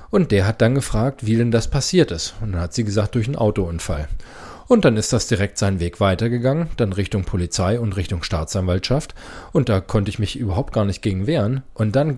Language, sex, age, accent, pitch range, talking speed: German, male, 40-59, German, 95-125 Hz, 215 wpm